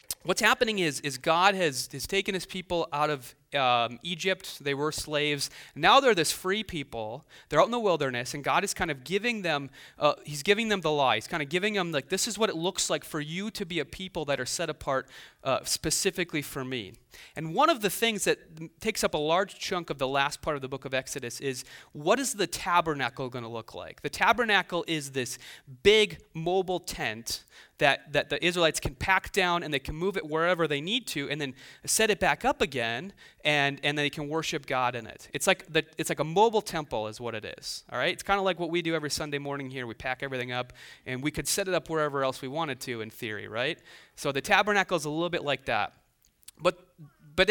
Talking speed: 240 wpm